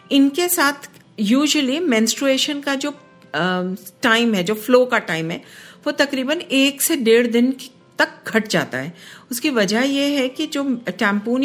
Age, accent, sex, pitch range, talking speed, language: 50-69, native, female, 190-255 Hz, 155 wpm, Hindi